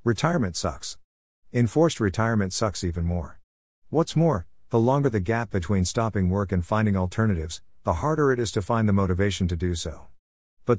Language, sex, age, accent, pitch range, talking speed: English, male, 50-69, American, 90-115 Hz, 170 wpm